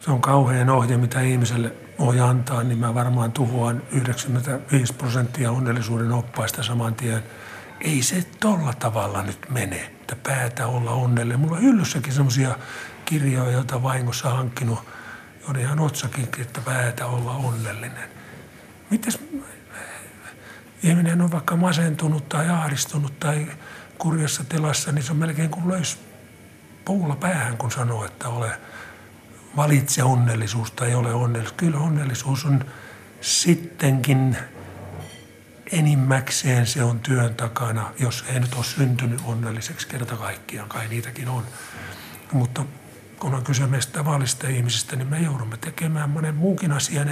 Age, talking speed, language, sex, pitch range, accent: 50-69, 130 wpm, Finnish, male, 120-145 Hz, native